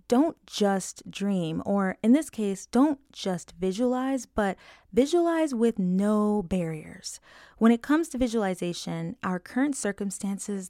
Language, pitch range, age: English, 180-250 Hz, 20-39